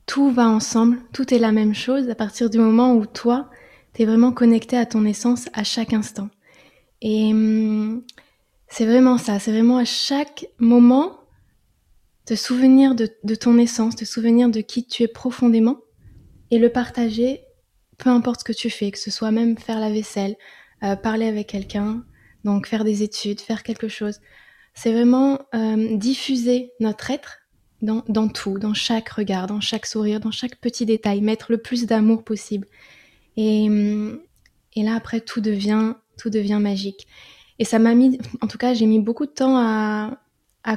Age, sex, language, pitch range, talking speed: 20-39, female, French, 215-240 Hz, 175 wpm